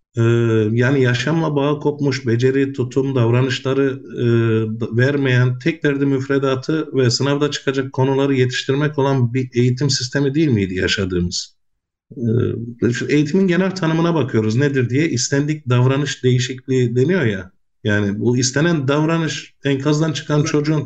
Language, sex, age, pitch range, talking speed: Turkish, male, 50-69, 120-150 Hz, 125 wpm